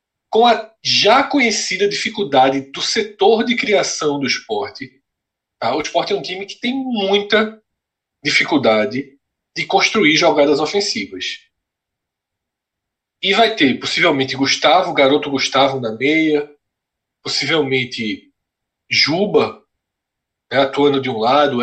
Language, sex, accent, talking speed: Portuguese, male, Brazilian, 110 wpm